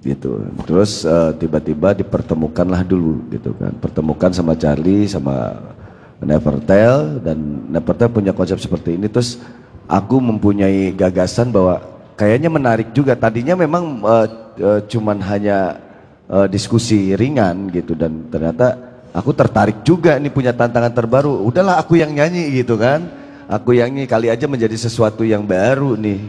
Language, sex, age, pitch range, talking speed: Indonesian, male, 30-49, 95-125 Hz, 145 wpm